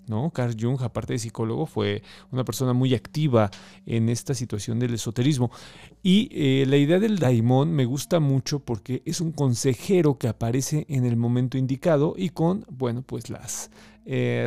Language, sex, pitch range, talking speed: Spanish, male, 115-145 Hz, 160 wpm